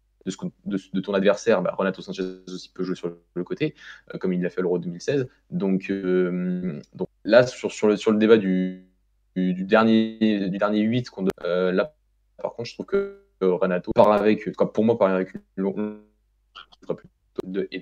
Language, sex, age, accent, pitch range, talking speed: French, male, 20-39, French, 90-105 Hz, 180 wpm